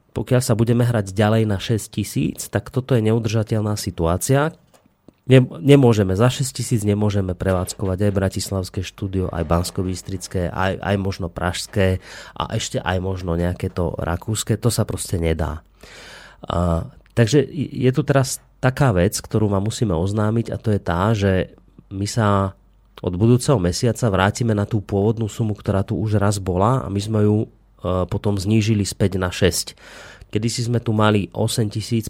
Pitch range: 95-115 Hz